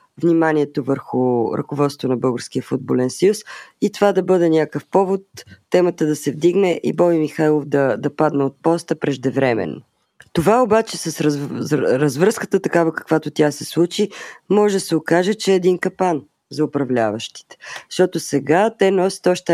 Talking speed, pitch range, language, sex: 160 wpm, 145-180 Hz, Bulgarian, female